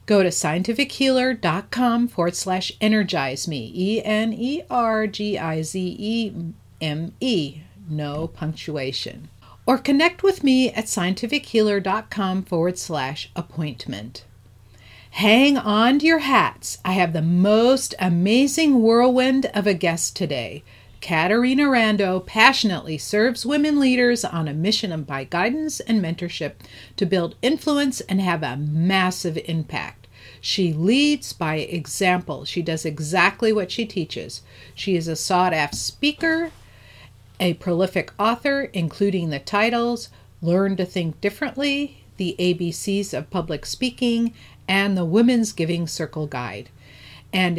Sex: female